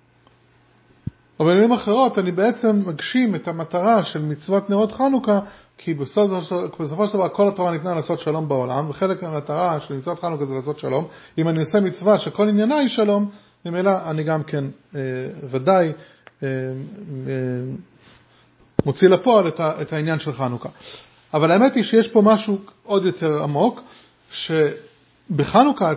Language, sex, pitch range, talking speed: English, male, 155-210 Hz, 150 wpm